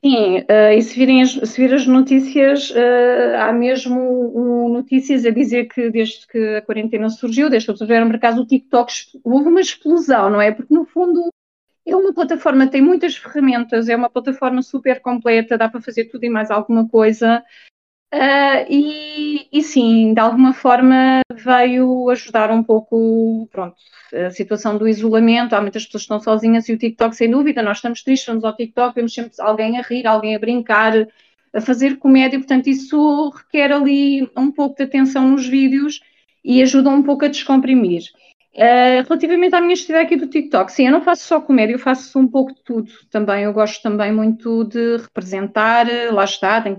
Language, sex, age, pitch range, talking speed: Portuguese, female, 30-49, 230-280 Hz, 190 wpm